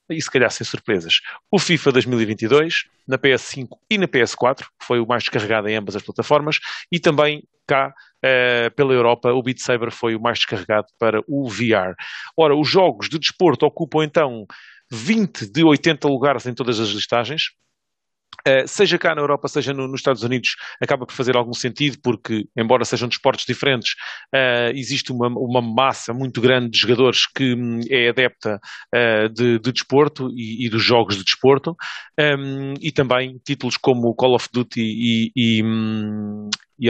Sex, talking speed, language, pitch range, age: male, 170 wpm, English, 115-135 Hz, 30-49